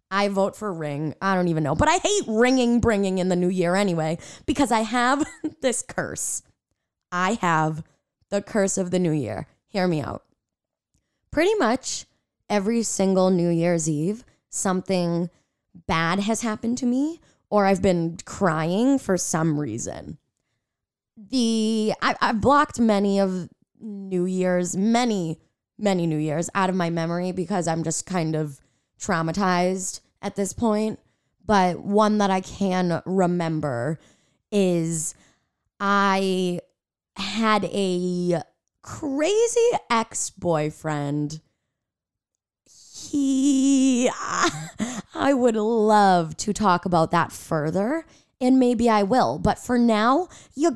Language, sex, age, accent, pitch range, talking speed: English, female, 20-39, American, 165-230 Hz, 130 wpm